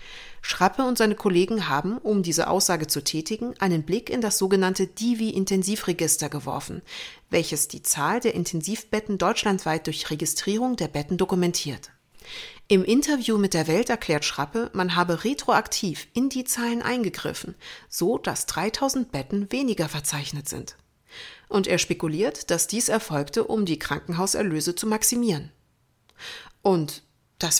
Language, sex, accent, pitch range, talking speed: German, female, German, 155-220 Hz, 135 wpm